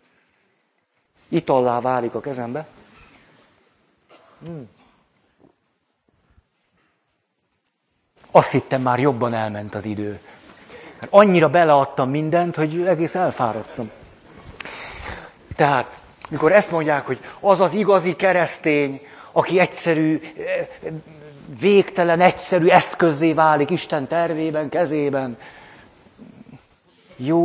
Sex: male